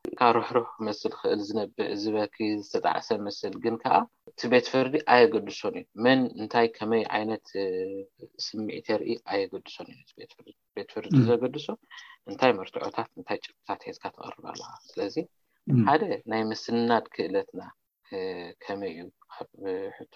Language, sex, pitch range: Amharic, male, 105-150 Hz